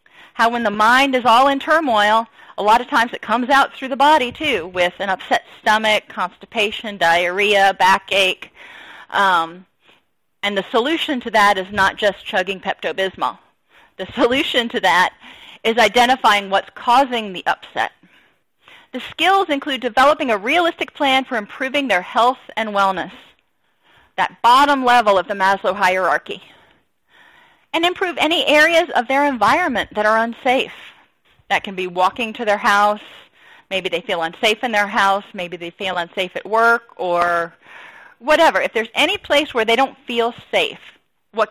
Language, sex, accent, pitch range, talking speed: English, female, American, 200-280 Hz, 160 wpm